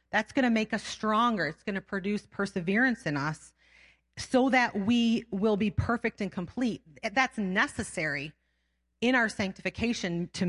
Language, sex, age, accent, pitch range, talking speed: English, female, 30-49, American, 180-230 Hz, 155 wpm